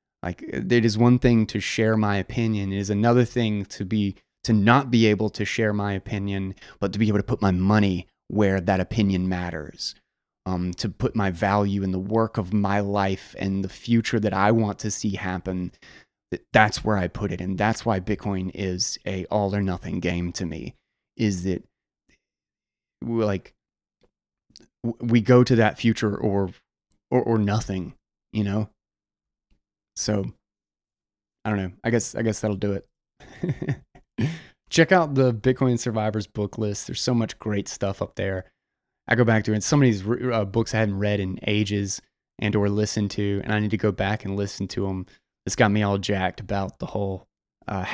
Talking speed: 190 wpm